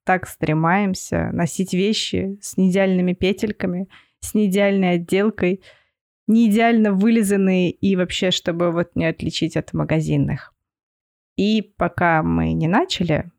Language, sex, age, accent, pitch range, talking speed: Russian, female, 20-39, native, 165-200 Hz, 110 wpm